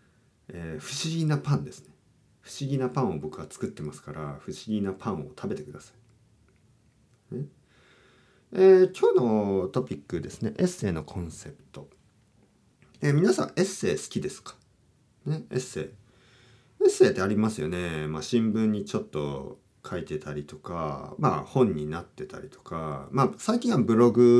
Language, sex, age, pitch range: Japanese, male, 40-59, 90-140 Hz